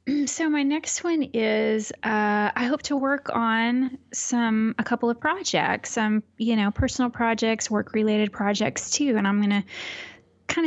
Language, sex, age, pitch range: English, female, 20-39, 195-245 Hz